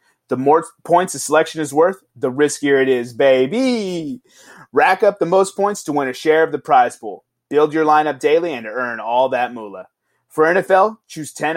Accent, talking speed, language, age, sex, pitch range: American, 195 wpm, English, 30-49, male, 130-180 Hz